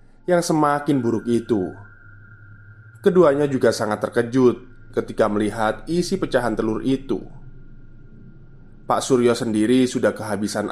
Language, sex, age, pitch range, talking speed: Indonesian, male, 20-39, 110-140 Hz, 105 wpm